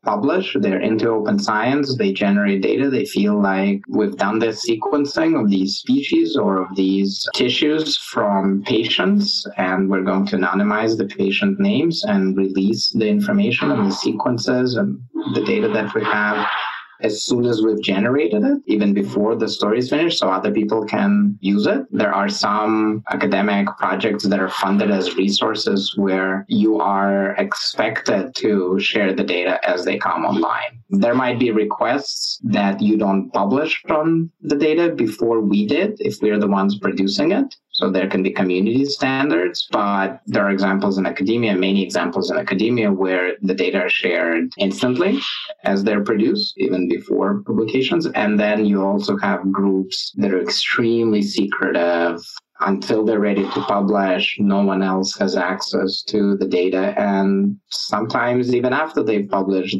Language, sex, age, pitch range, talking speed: English, male, 30-49, 95-130 Hz, 165 wpm